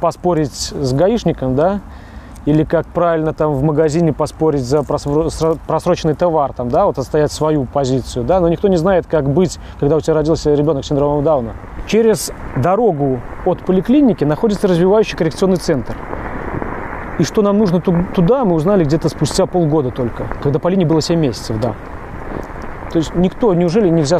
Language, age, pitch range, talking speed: Russian, 30-49, 140-175 Hz, 165 wpm